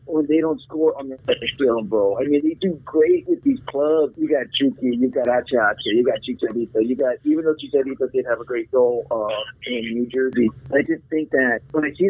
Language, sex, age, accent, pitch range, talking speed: English, male, 50-69, American, 130-155 Hz, 230 wpm